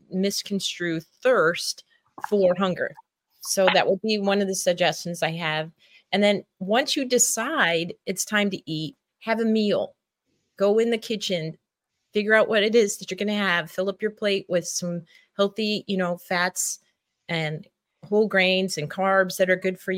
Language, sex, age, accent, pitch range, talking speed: English, female, 30-49, American, 170-200 Hz, 175 wpm